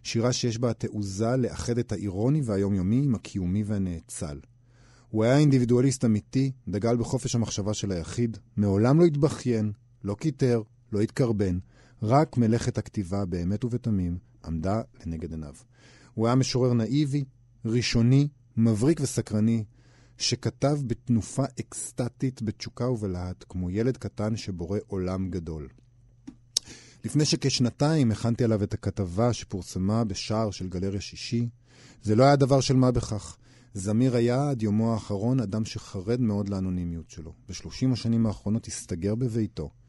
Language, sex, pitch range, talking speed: Hebrew, male, 100-125 Hz, 130 wpm